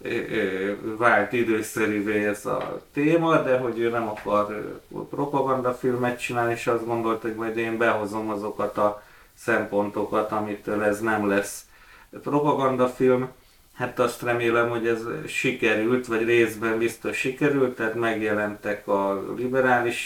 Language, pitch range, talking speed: Hungarian, 105-120 Hz, 125 wpm